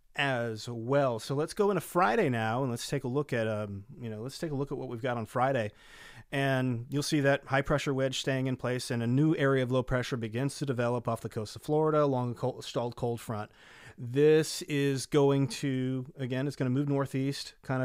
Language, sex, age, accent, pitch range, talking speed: English, male, 30-49, American, 115-145 Hz, 230 wpm